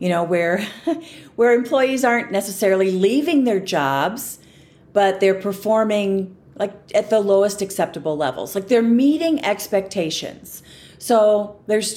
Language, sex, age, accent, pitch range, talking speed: English, female, 40-59, American, 170-210 Hz, 125 wpm